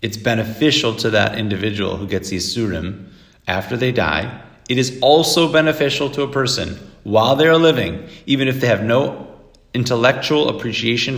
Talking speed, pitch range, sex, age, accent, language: 155 wpm, 100-135 Hz, male, 40-59, American, English